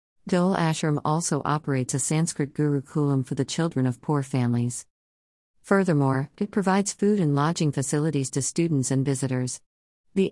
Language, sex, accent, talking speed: English, female, American, 145 wpm